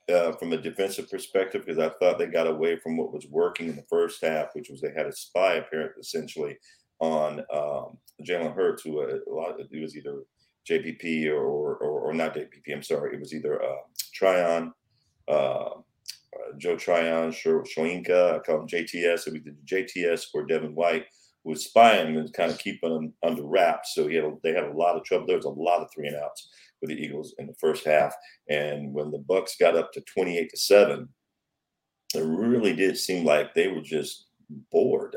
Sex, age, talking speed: male, 40-59, 210 wpm